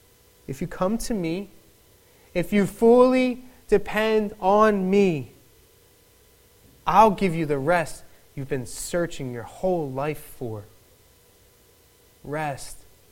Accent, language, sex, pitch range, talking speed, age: American, English, male, 130-200 Hz, 110 wpm, 30-49